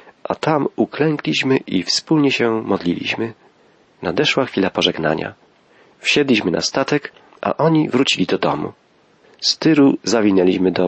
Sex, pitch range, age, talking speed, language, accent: male, 95-135 Hz, 40-59, 120 wpm, Polish, native